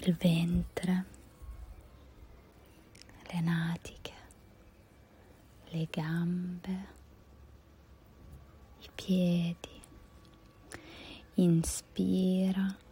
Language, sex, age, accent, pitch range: Italian, female, 20-39, native, 160-195 Hz